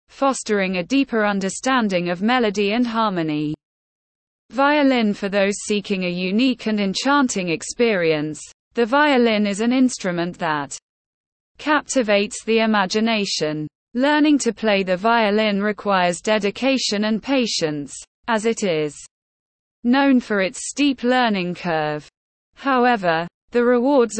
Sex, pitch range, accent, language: female, 185-250 Hz, British, English